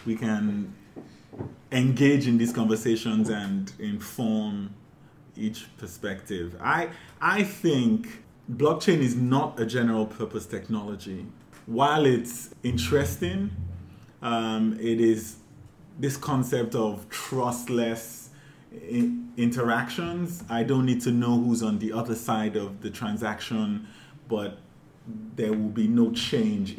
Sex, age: male, 20-39